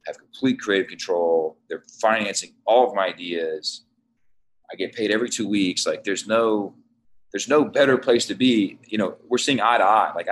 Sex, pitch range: male, 95-135 Hz